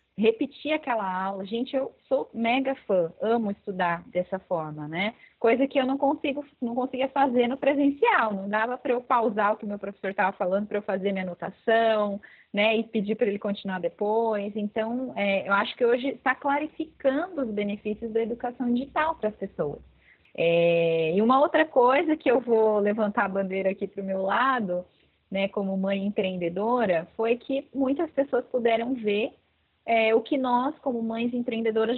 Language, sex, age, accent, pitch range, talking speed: Portuguese, female, 20-39, Brazilian, 195-245 Hz, 180 wpm